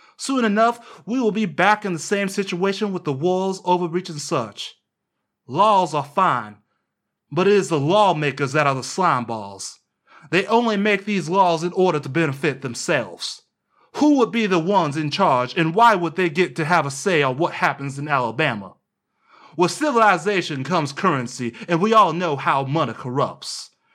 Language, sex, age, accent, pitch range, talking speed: English, male, 30-49, American, 150-210 Hz, 175 wpm